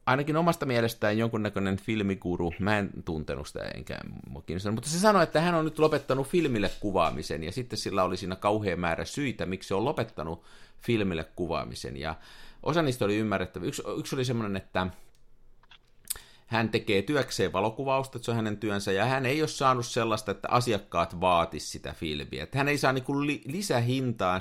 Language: Finnish